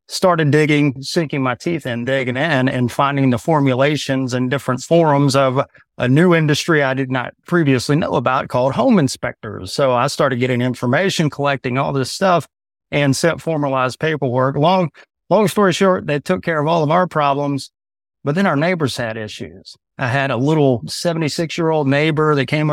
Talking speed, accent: 175 wpm, American